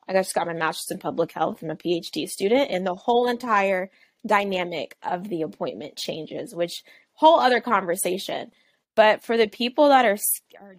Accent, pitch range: American, 180-215 Hz